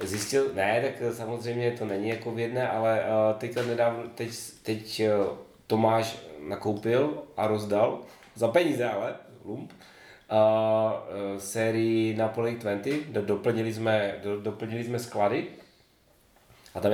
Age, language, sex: 30-49, Czech, male